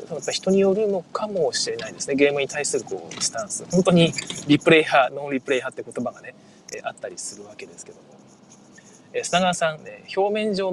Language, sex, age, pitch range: Japanese, male, 20-39, 165-260 Hz